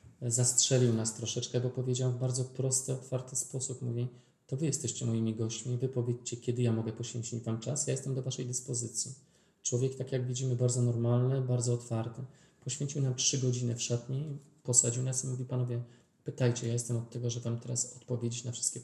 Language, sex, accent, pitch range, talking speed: Polish, male, native, 115-130 Hz, 190 wpm